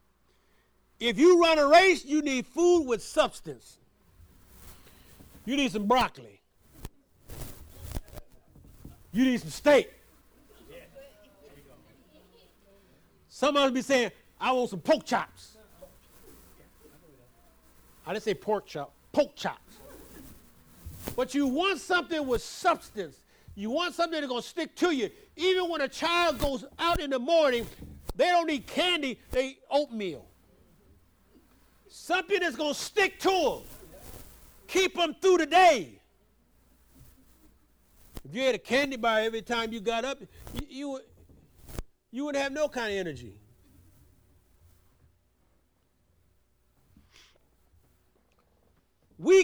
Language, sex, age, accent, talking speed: English, male, 50-69, American, 120 wpm